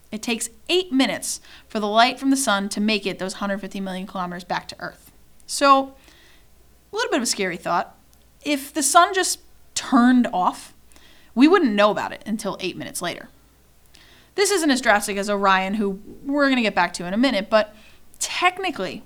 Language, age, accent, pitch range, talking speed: English, 30-49, American, 200-275 Hz, 190 wpm